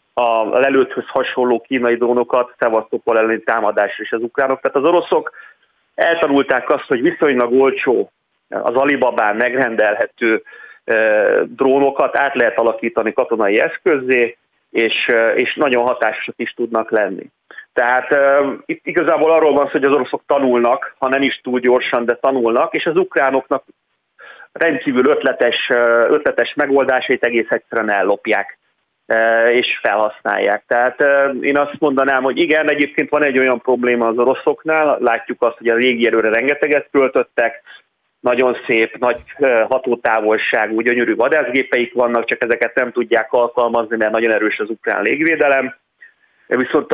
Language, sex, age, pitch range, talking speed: Hungarian, male, 30-49, 120-145 Hz, 130 wpm